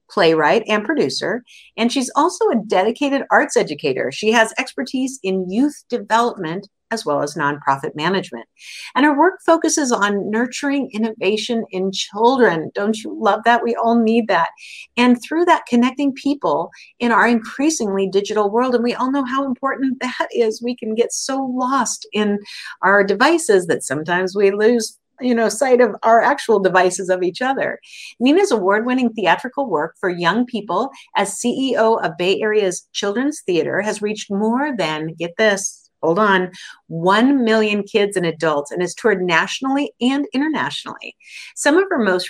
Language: English